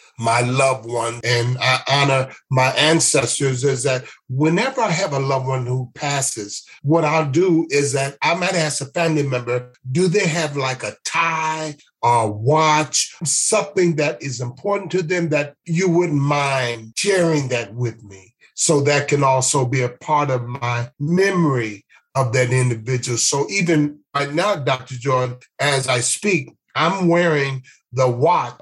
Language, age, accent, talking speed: English, 40-59, American, 160 wpm